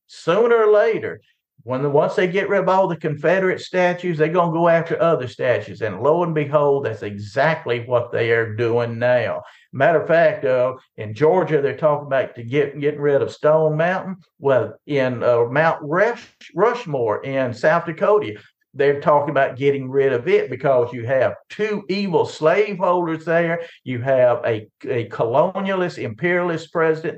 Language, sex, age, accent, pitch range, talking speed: English, male, 50-69, American, 140-200 Hz, 170 wpm